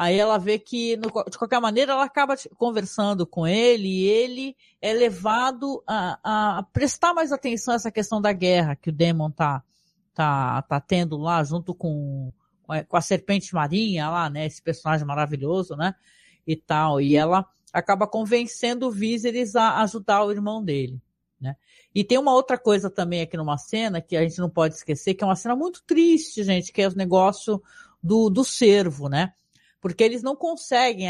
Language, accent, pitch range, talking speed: Portuguese, Brazilian, 170-235 Hz, 180 wpm